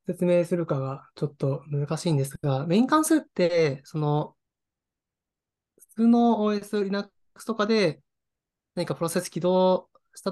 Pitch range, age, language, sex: 140-185 Hz, 20-39, Japanese, male